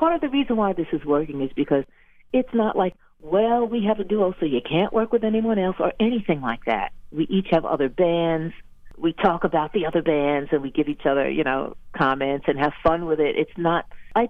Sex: female